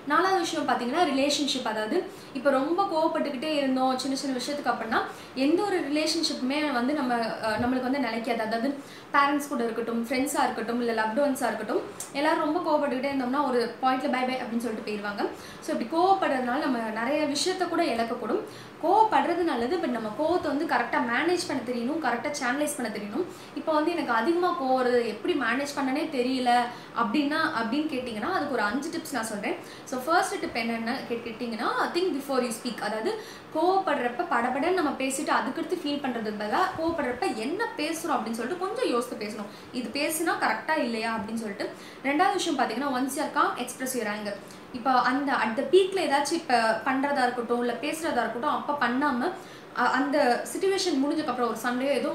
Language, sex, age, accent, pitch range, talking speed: Tamil, female, 20-39, native, 245-310 Hz, 160 wpm